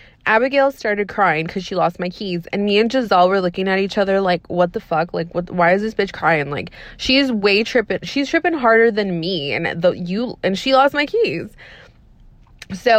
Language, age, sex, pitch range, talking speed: English, 20-39, female, 175-220 Hz, 215 wpm